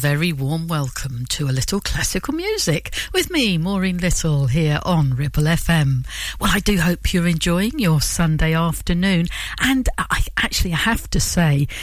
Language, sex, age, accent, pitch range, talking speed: English, female, 60-79, British, 150-195 Hz, 160 wpm